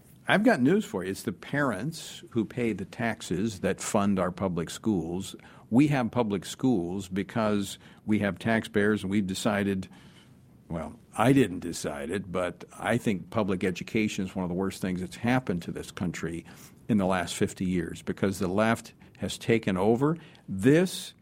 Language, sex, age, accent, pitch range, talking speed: English, male, 50-69, American, 100-130 Hz, 175 wpm